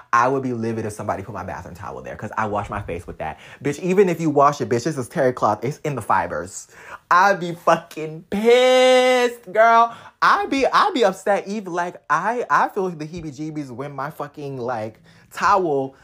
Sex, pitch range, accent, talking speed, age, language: male, 110-155 Hz, American, 215 wpm, 20-39, English